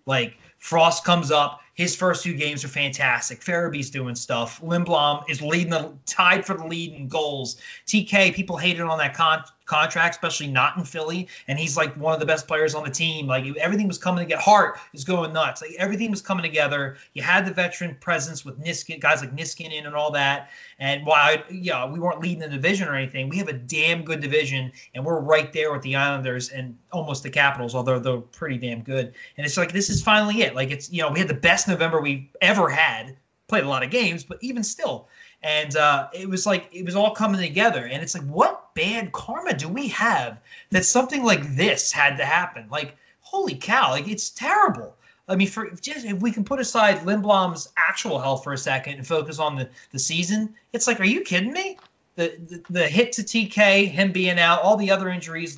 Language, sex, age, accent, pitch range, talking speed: English, male, 30-49, American, 145-190 Hz, 225 wpm